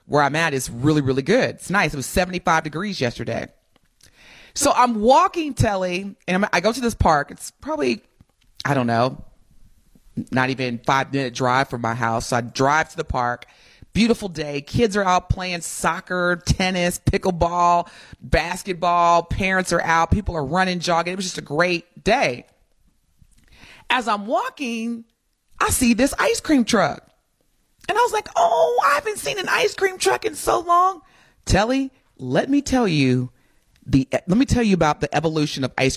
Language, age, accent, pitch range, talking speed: English, 30-49, American, 150-225 Hz, 175 wpm